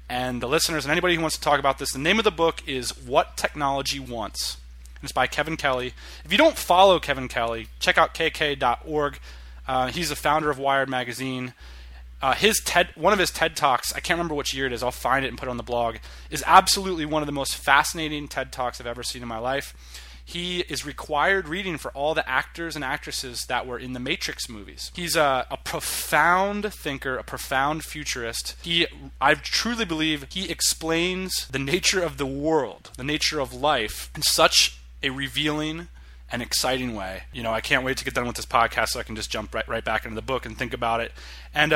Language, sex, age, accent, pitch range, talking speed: English, male, 20-39, American, 120-165 Hz, 220 wpm